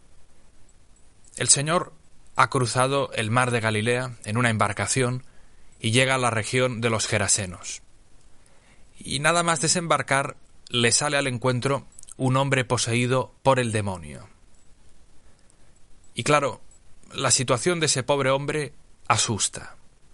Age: 30-49